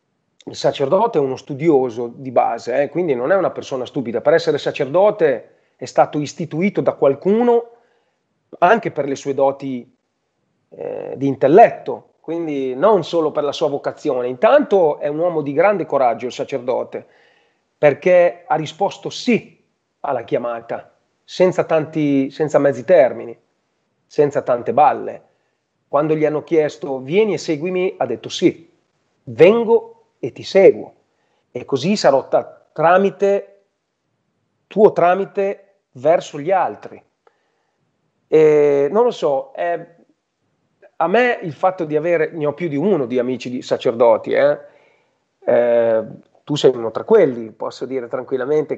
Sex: male